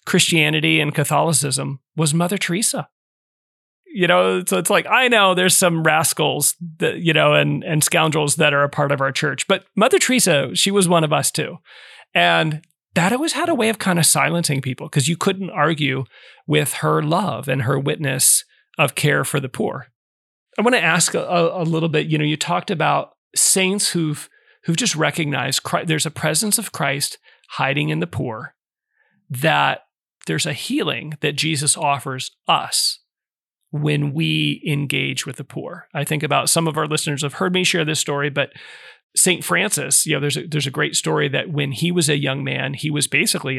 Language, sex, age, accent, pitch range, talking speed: English, male, 30-49, American, 140-170 Hz, 195 wpm